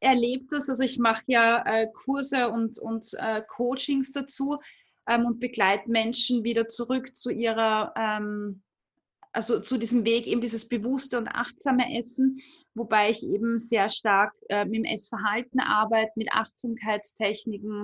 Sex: female